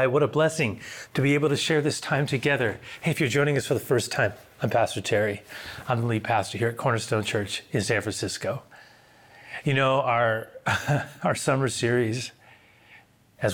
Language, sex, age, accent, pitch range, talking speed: English, male, 30-49, American, 105-125 Hz, 180 wpm